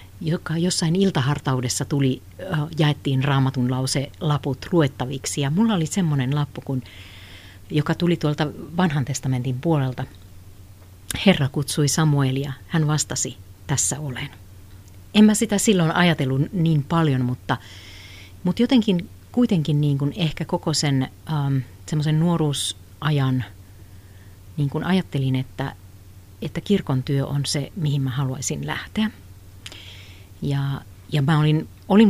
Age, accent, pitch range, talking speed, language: 50-69, native, 100-160 Hz, 125 wpm, Finnish